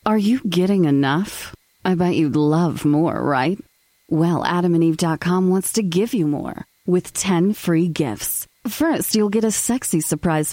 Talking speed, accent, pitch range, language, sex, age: 155 wpm, American, 160-230 Hz, English, female, 30-49